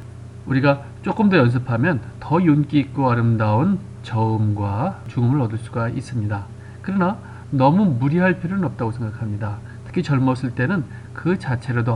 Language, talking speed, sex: English, 120 wpm, male